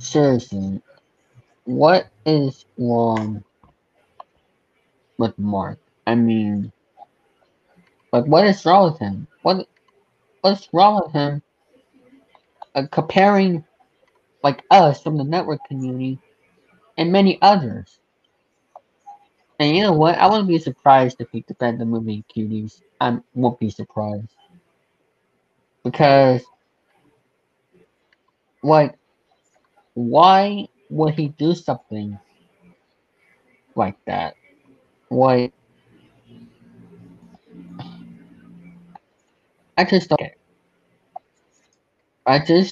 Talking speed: 90 wpm